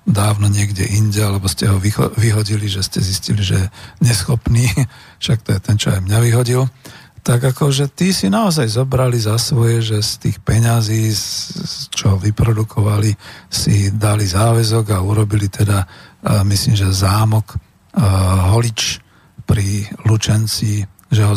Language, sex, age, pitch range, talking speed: Slovak, male, 40-59, 100-120 Hz, 135 wpm